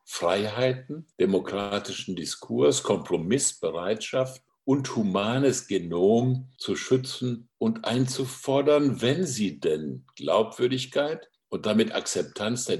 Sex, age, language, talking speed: male, 60-79, German, 90 wpm